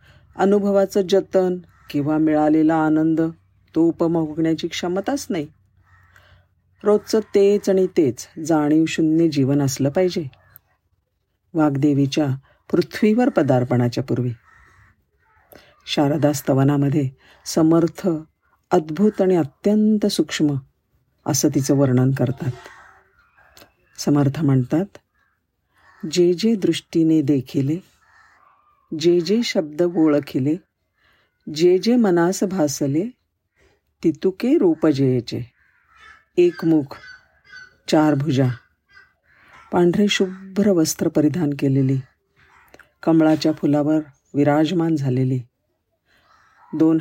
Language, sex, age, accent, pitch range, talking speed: Marathi, female, 50-69, native, 140-185 Hz, 80 wpm